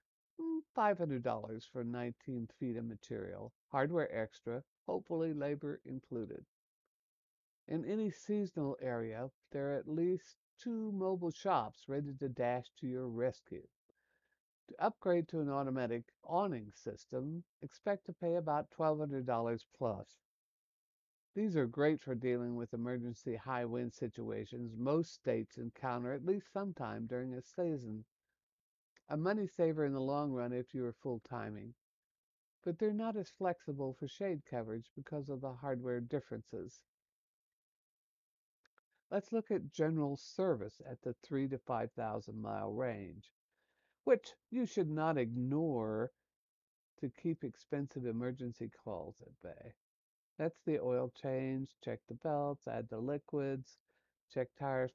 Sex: male